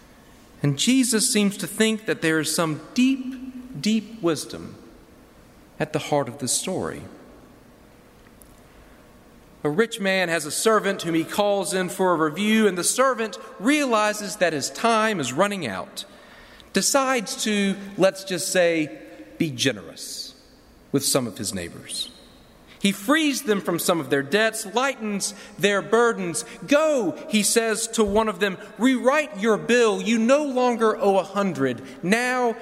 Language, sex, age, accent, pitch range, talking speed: English, male, 40-59, American, 180-240 Hz, 150 wpm